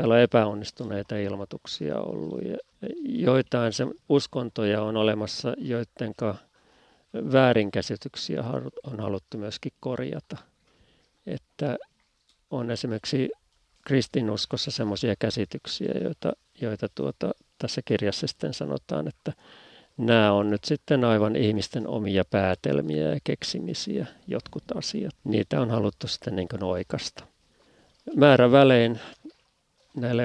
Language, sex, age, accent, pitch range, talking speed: Finnish, male, 50-69, native, 100-120 Hz, 100 wpm